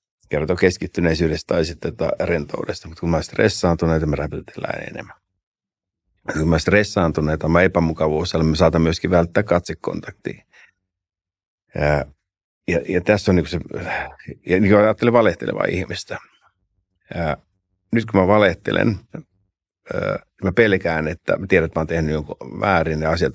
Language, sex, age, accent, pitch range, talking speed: Finnish, male, 60-79, native, 80-95 Hz, 130 wpm